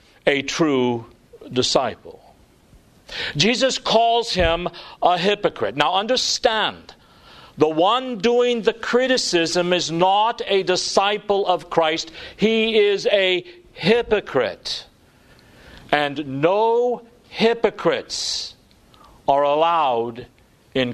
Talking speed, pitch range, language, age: 90 wpm, 160-230 Hz, English, 50-69